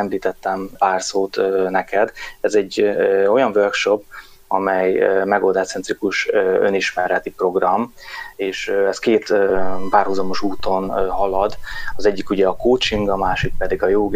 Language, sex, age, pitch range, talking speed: Hungarian, male, 20-39, 95-105 Hz, 125 wpm